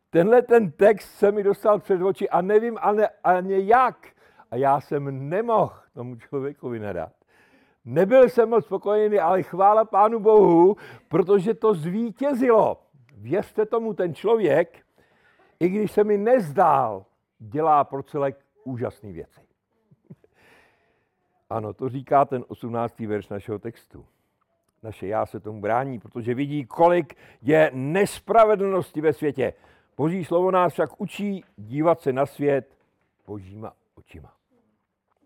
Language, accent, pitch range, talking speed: Czech, native, 135-210 Hz, 130 wpm